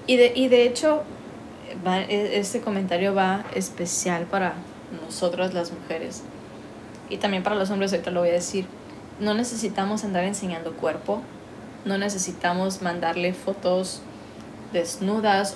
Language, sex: Spanish, female